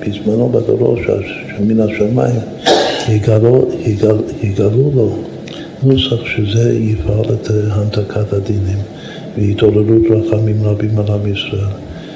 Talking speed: 100 wpm